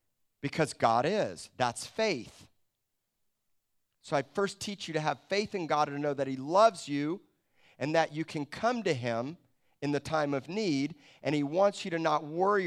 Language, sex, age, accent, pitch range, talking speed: English, male, 40-59, American, 135-180 Hz, 195 wpm